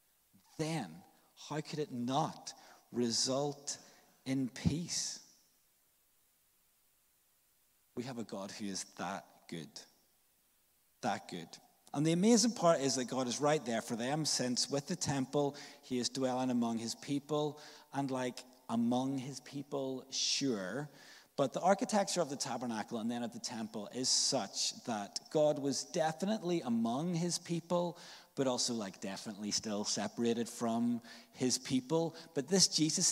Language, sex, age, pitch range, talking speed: English, male, 30-49, 125-160 Hz, 140 wpm